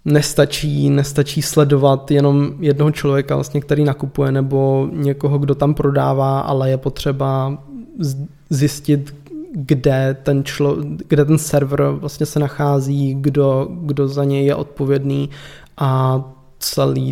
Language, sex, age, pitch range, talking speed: Czech, male, 20-39, 140-155 Hz, 125 wpm